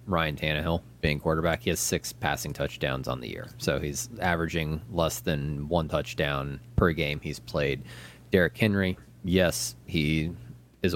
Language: English